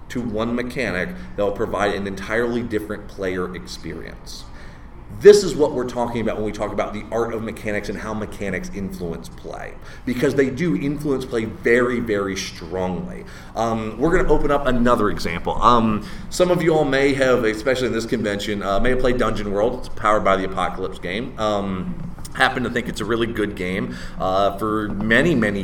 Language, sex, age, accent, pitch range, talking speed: English, male, 30-49, American, 100-135 Hz, 190 wpm